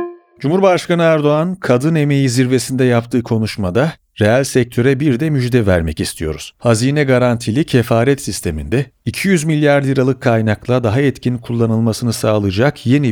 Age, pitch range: 40-59, 110-150 Hz